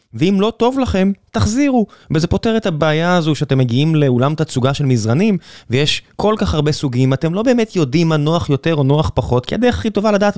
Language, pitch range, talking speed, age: Hebrew, 135-190 Hz, 210 wpm, 20-39